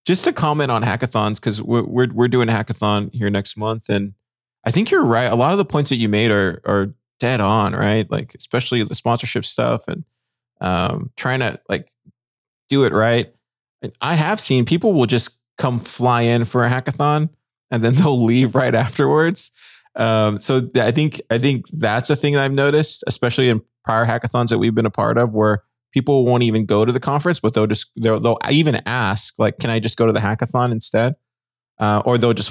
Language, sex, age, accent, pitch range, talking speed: English, male, 20-39, American, 110-135 Hz, 210 wpm